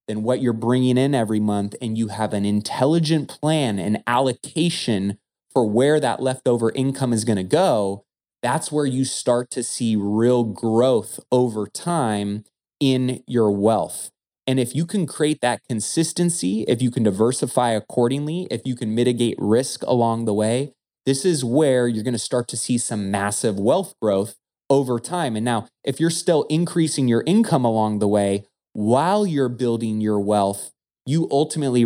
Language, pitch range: English, 110-135 Hz